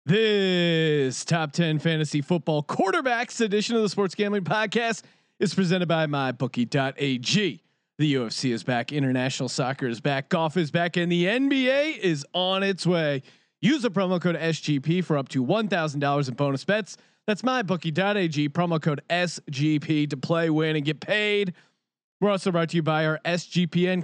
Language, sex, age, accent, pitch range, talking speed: English, male, 30-49, American, 150-185 Hz, 160 wpm